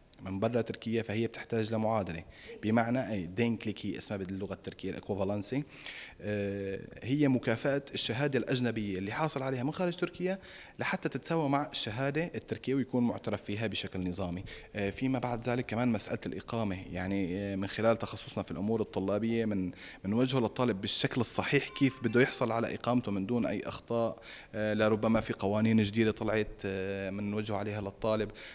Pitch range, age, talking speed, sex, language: 105-120 Hz, 30-49, 145 wpm, male, Arabic